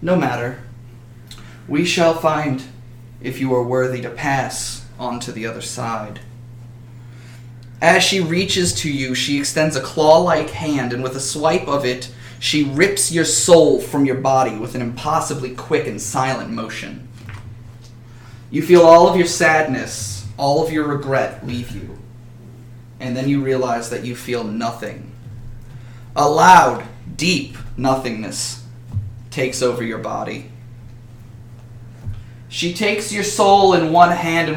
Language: English